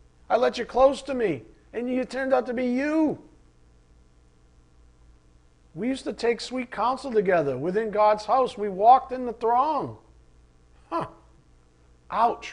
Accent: American